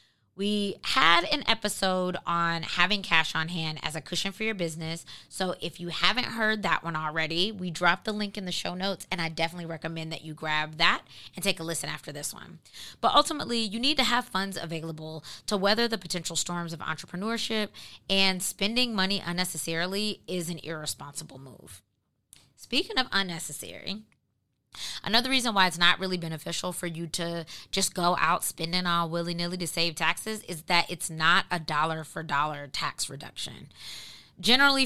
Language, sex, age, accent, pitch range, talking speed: English, female, 20-39, American, 165-205 Hz, 170 wpm